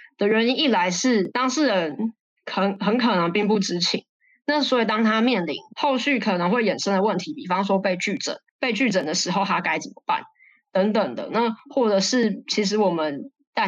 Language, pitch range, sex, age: Chinese, 185-235 Hz, female, 20-39